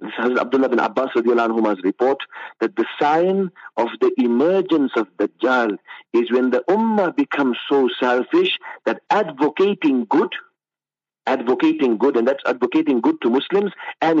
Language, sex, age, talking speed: English, male, 50-69, 130 wpm